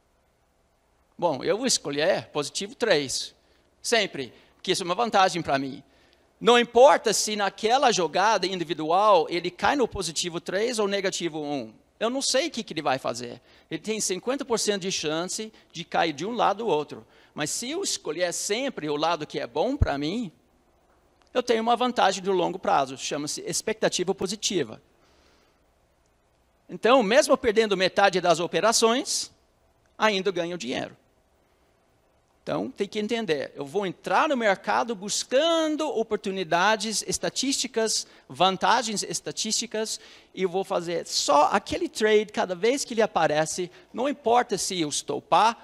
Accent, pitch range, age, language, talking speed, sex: Brazilian, 165-225 Hz, 50-69, Portuguese, 145 wpm, male